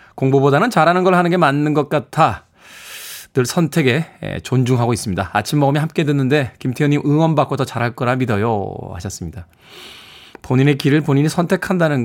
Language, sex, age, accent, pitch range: Korean, male, 20-39, native, 125-160 Hz